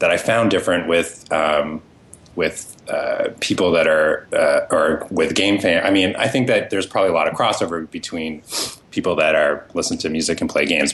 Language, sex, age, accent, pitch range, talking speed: English, male, 30-49, American, 90-110 Hz, 205 wpm